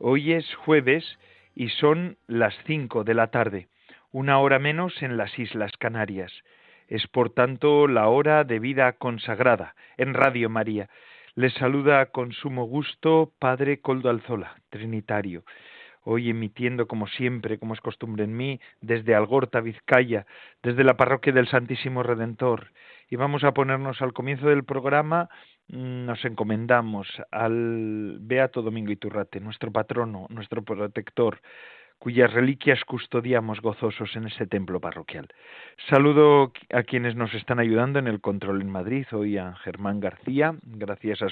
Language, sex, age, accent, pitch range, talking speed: Spanish, male, 40-59, Spanish, 105-130 Hz, 140 wpm